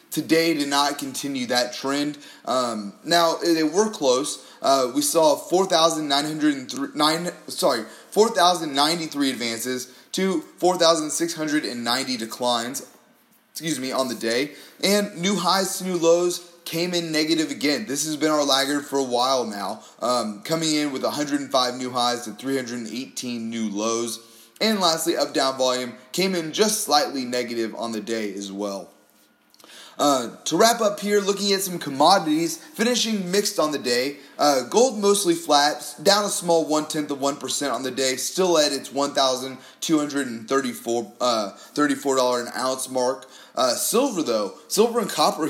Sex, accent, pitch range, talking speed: male, American, 130-180 Hz, 180 wpm